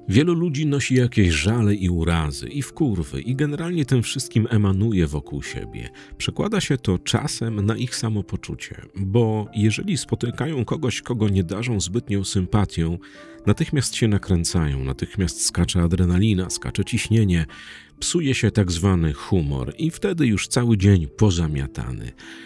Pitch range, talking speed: 90-120 Hz, 140 wpm